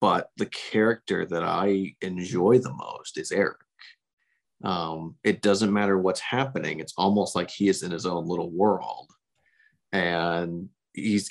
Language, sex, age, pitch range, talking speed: English, male, 30-49, 95-125 Hz, 150 wpm